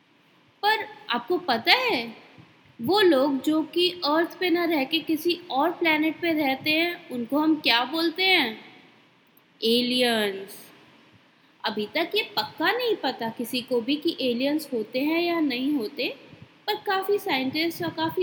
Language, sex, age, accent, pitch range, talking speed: Hindi, female, 20-39, native, 250-345 Hz, 140 wpm